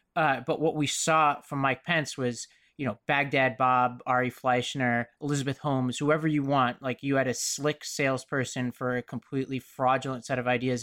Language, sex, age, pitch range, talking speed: English, male, 20-39, 130-165 Hz, 185 wpm